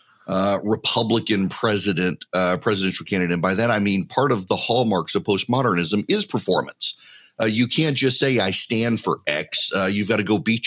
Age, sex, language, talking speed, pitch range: 40-59, male, English, 190 wpm, 100-120 Hz